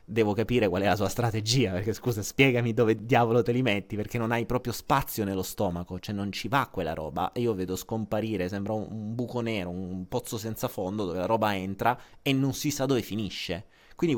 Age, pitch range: 30-49, 95-125 Hz